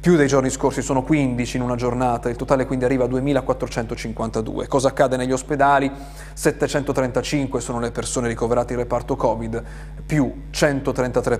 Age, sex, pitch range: 30-49, male, 120-140 Hz